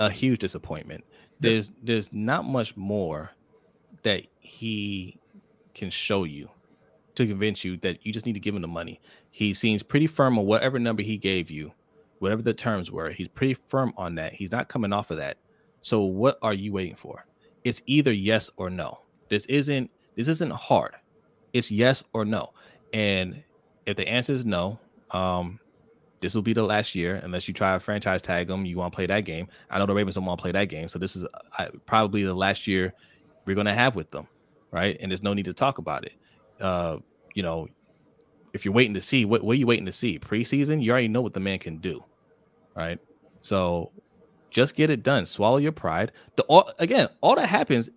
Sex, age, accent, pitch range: male, 20-39, American, 95-125 Hz